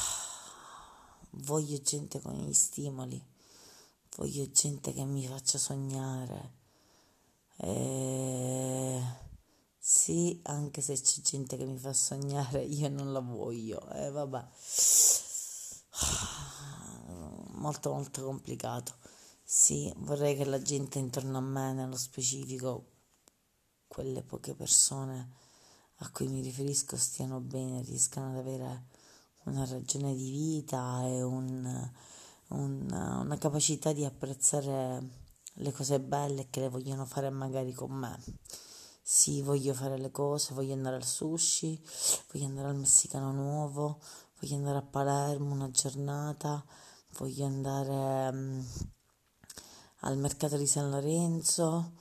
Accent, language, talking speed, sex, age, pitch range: native, Italian, 120 wpm, female, 30-49, 130-145 Hz